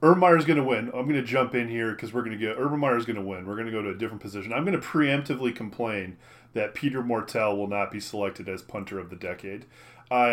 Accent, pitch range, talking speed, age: American, 110-125 Hz, 275 wpm, 30-49